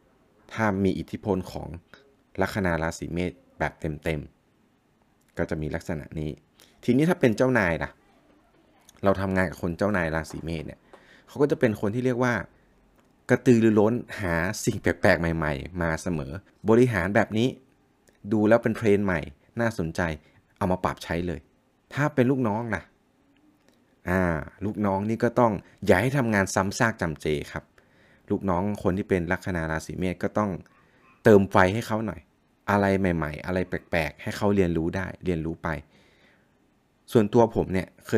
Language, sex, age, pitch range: Thai, male, 20-39, 85-115 Hz